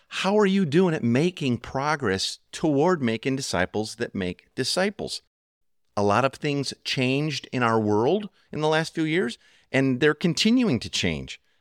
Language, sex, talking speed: English, male, 160 wpm